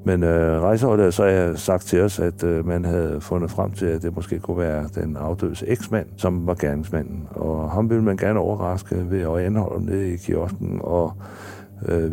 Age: 60-79